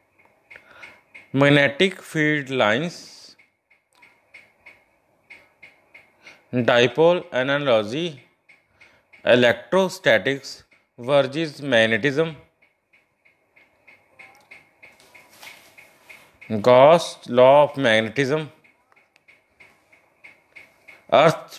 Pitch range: 125-170 Hz